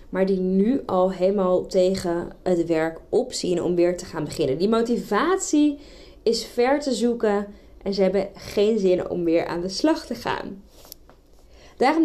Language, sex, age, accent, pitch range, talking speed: Dutch, female, 20-39, Dutch, 185-245 Hz, 165 wpm